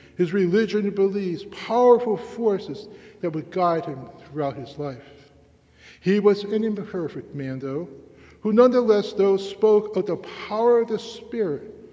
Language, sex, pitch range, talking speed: English, male, 150-190 Hz, 145 wpm